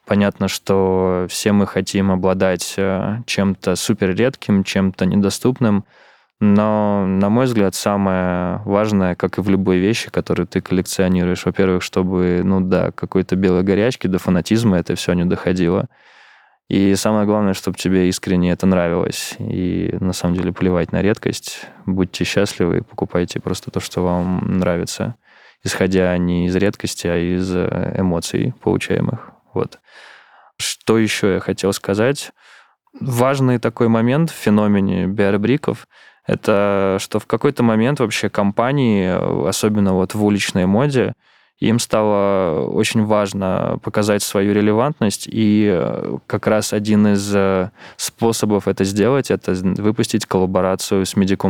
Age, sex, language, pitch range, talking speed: 20-39, male, Russian, 95-105 Hz, 130 wpm